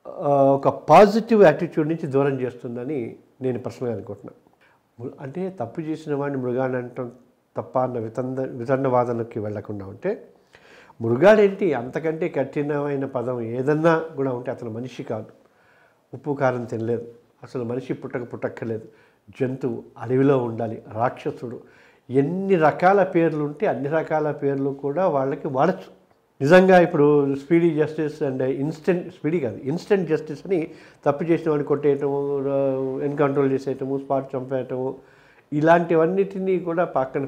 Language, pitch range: Telugu, 125-155 Hz